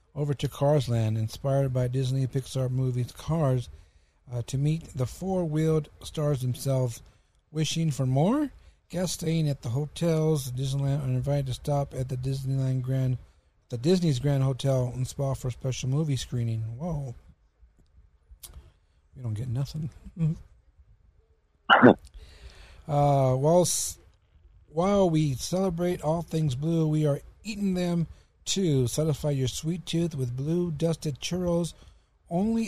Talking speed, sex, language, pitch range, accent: 130 wpm, male, English, 120-155 Hz, American